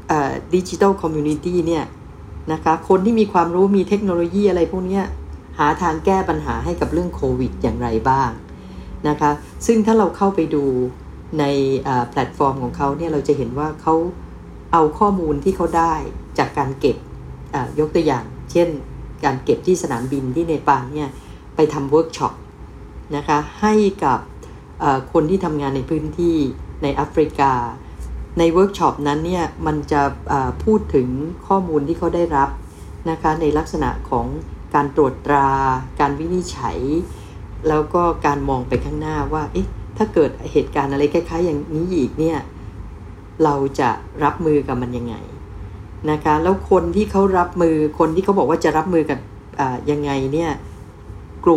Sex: female